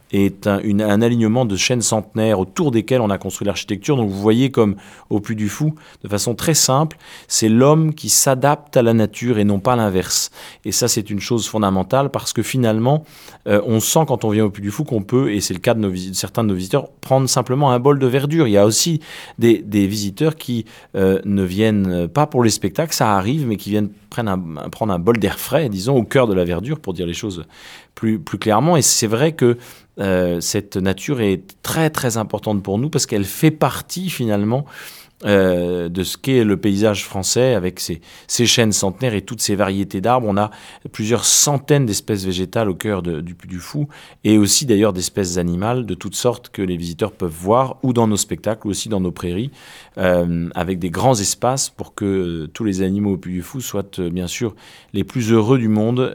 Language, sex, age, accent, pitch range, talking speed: French, male, 30-49, French, 95-125 Hz, 220 wpm